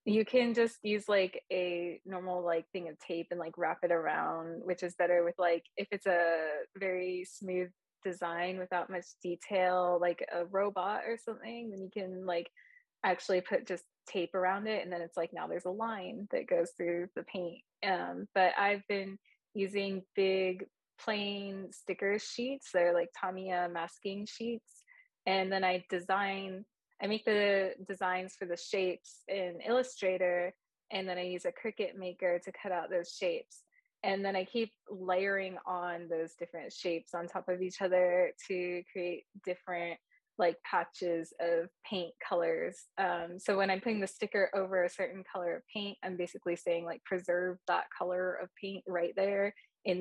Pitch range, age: 175-200 Hz, 20-39